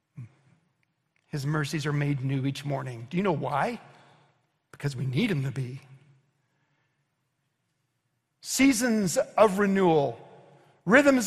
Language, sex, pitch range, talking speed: English, male, 145-215 Hz, 110 wpm